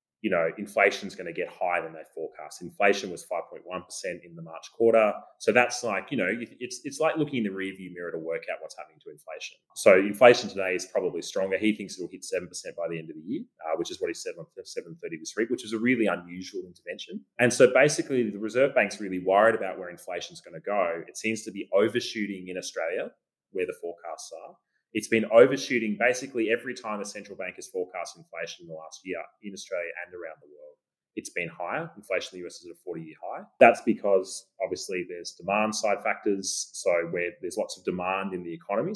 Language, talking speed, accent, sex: English, 225 wpm, Australian, male